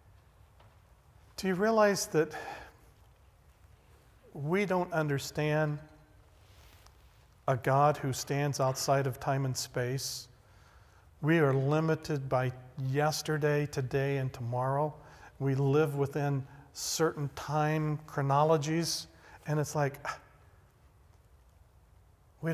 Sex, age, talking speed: male, 50-69, 90 wpm